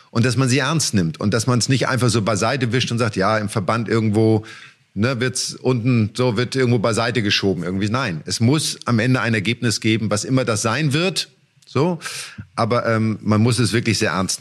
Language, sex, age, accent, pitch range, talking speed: German, male, 50-69, German, 110-135 Hz, 220 wpm